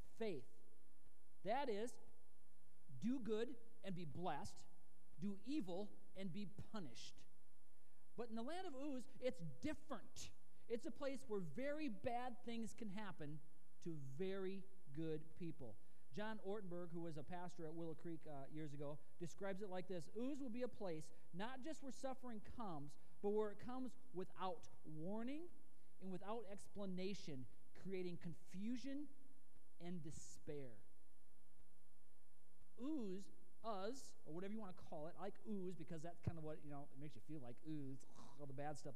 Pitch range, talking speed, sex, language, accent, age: 140-210 Hz, 155 wpm, male, English, American, 40-59